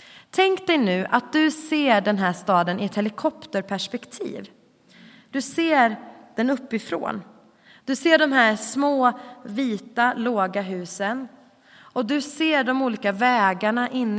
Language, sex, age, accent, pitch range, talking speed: Swedish, female, 30-49, native, 200-270 Hz, 130 wpm